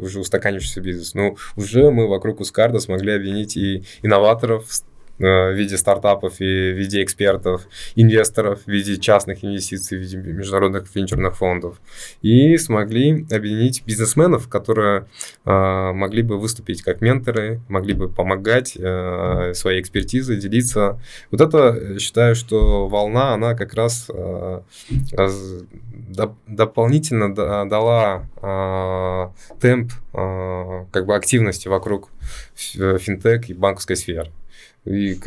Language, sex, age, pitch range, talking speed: Russian, male, 20-39, 95-115 Hz, 125 wpm